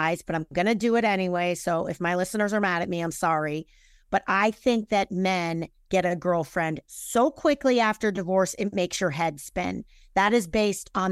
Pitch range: 180-235 Hz